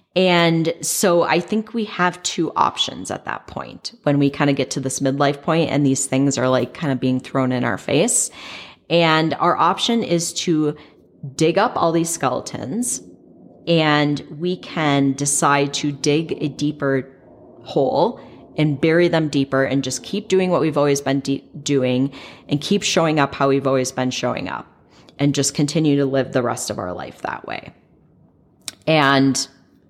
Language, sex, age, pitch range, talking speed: English, female, 10-29, 135-165 Hz, 175 wpm